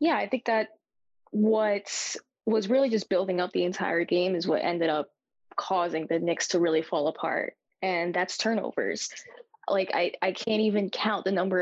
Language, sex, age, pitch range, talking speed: English, female, 10-29, 180-215 Hz, 180 wpm